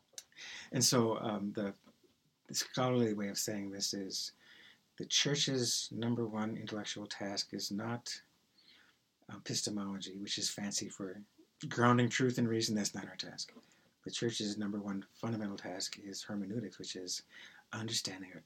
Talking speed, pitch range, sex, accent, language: 145 wpm, 100-120 Hz, male, American, English